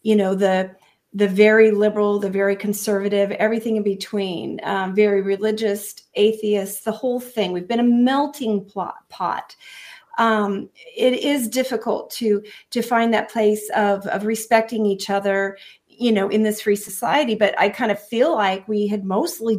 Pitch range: 200-245 Hz